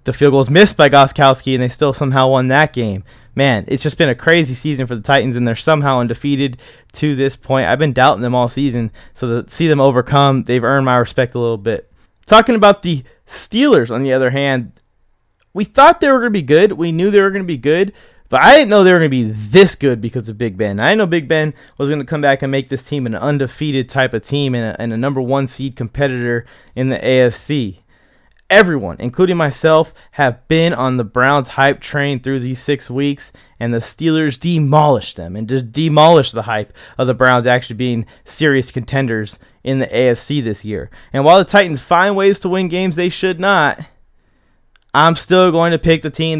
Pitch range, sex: 120-155 Hz, male